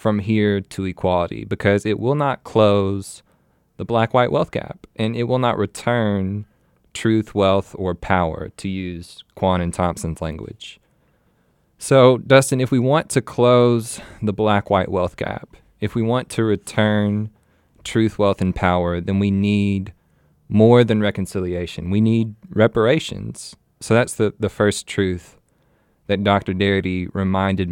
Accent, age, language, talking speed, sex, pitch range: American, 20-39, English, 145 wpm, male, 100-120 Hz